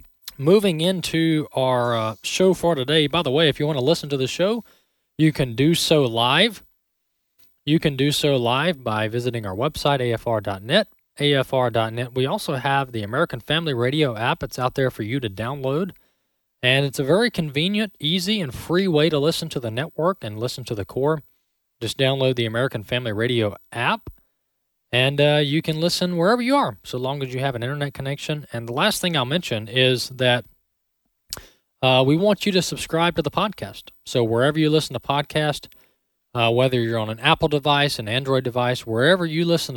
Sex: male